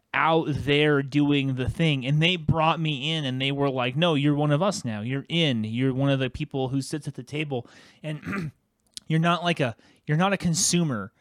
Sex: male